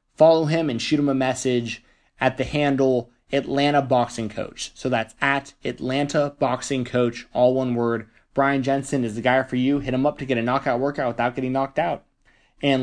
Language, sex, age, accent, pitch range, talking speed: English, male, 20-39, American, 120-145 Hz, 195 wpm